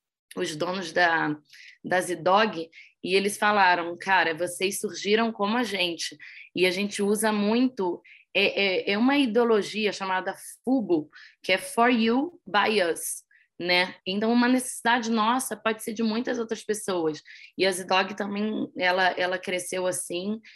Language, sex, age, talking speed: Portuguese, female, 10-29, 150 wpm